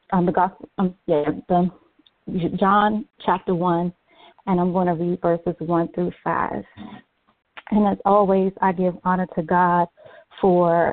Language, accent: English, American